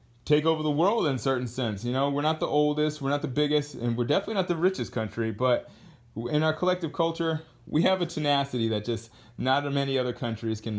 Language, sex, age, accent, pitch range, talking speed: English, male, 30-49, American, 115-150 Hz, 225 wpm